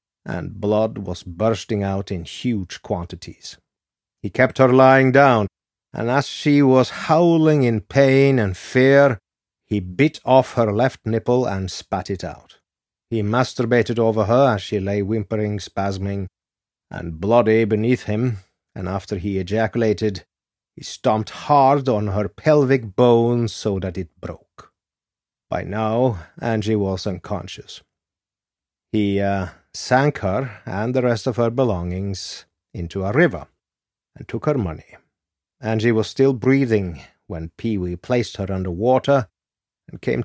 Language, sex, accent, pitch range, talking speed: English, male, Finnish, 95-125 Hz, 140 wpm